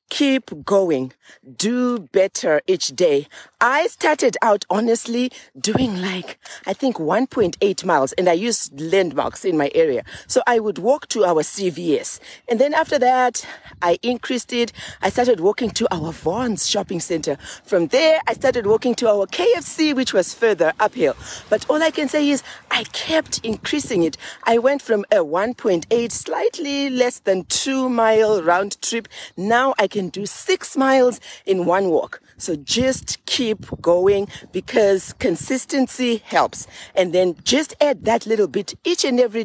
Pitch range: 185-265 Hz